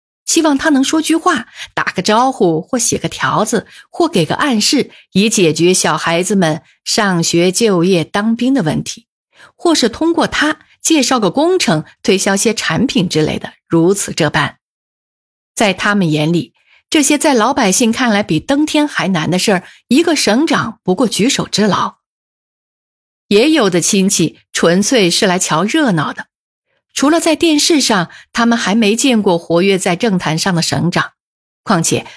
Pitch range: 180-265 Hz